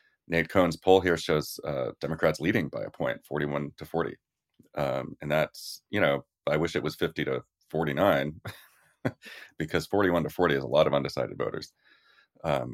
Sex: male